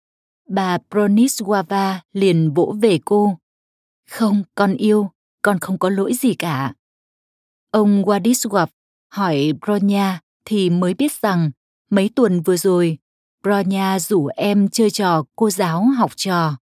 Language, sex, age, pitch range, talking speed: Vietnamese, female, 20-39, 175-220 Hz, 130 wpm